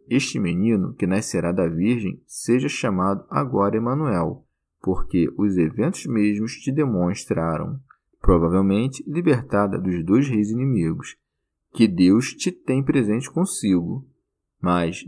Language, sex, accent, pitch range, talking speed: Portuguese, male, Brazilian, 95-140 Hz, 115 wpm